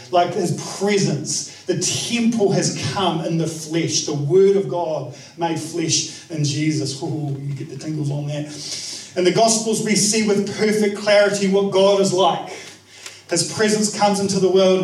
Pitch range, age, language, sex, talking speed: 165-205 Hz, 40-59, English, male, 170 wpm